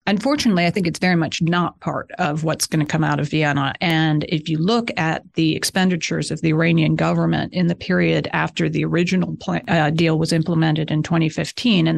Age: 40-59